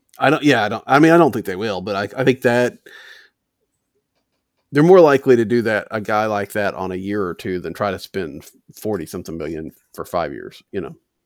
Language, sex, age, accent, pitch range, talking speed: English, male, 40-59, American, 105-130 Hz, 235 wpm